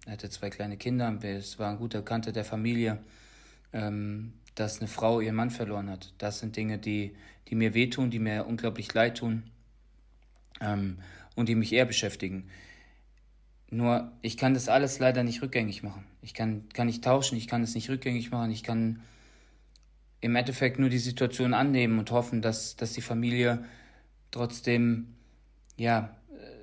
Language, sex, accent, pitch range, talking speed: German, male, German, 105-125 Hz, 160 wpm